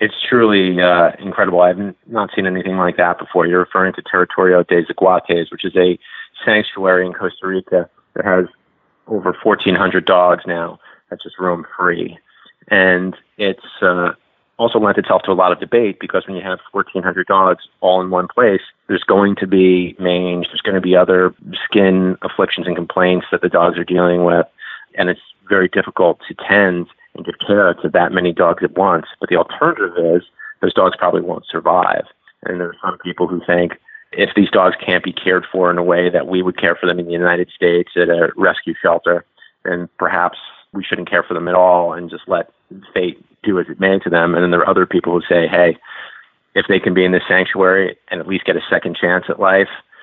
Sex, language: male, English